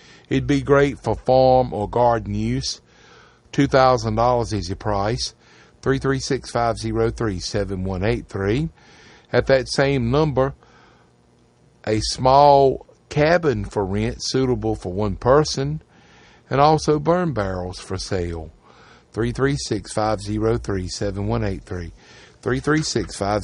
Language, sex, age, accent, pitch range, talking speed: English, male, 50-69, American, 100-130 Hz, 115 wpm